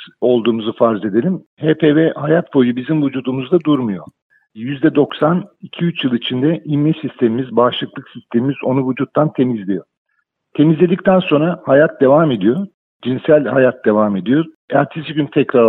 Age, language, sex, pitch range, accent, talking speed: 50-69, Turkish, male, 125-155 Hz, native, 120 wpm